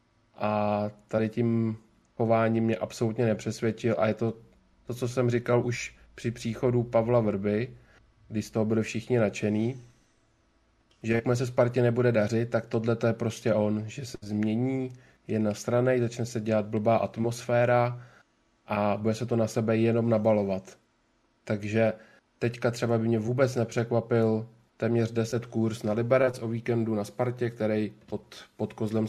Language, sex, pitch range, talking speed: Czech, male, 110-120 Hz, 155 wpm